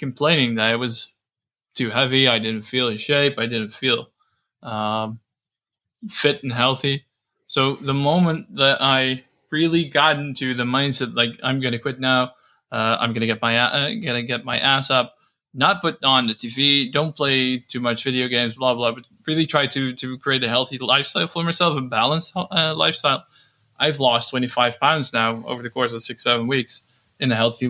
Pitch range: 120-140 Hz